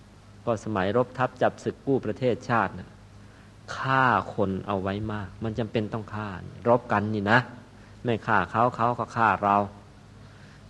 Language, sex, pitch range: Thai, male, 100-120 Hz